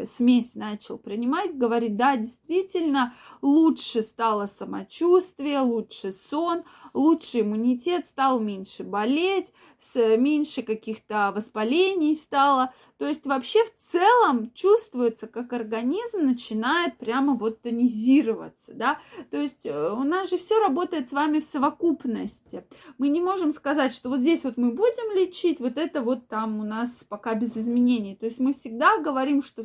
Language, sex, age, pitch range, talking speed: Russian, female, 20-39, 225-300 Hz, 140 wpm